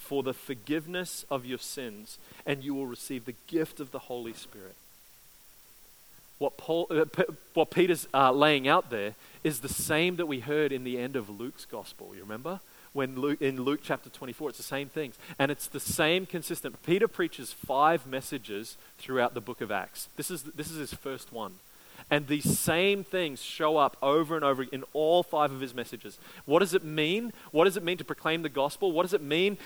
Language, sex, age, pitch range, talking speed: English, male, 30-49, 130-160 Hz, 205 wpm